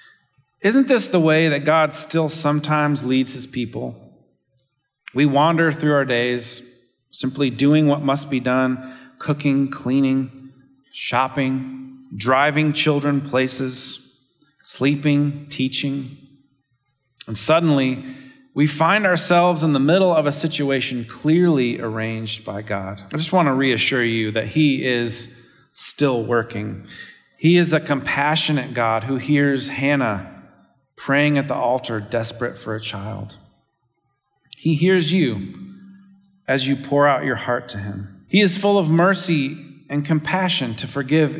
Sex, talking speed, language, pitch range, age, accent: male, 135 wpm, English, 130-160 Hz, 40-59, American